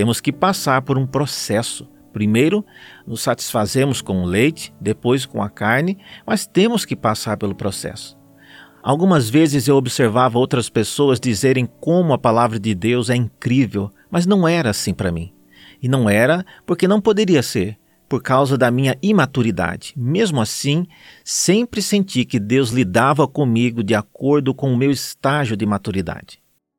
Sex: male